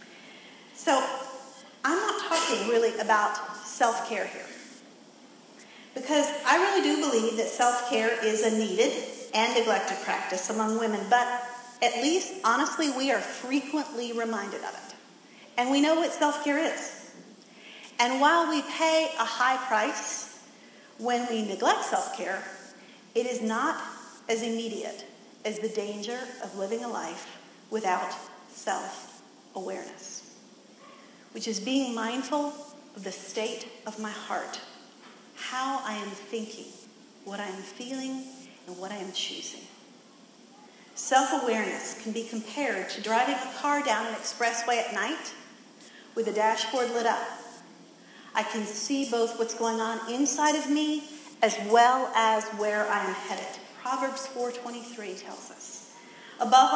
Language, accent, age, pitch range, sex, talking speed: English, American, 40-59, 220-270 Hz, female, 135 wpm